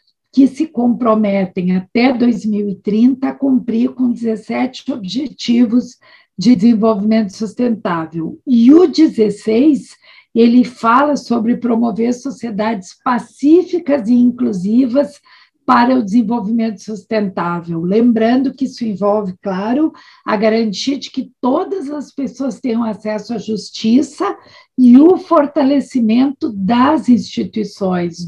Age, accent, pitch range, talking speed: 50-69, Brazilian, 215-270 Hz, 105 wpm